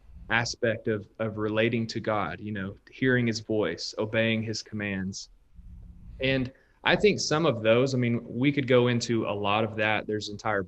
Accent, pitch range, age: American, 105-125 Hz, 30-49